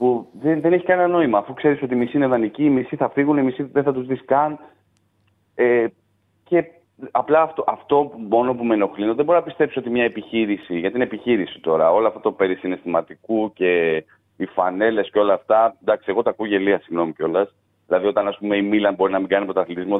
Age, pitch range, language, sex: 30-49, 105-135 Hz, Greek, male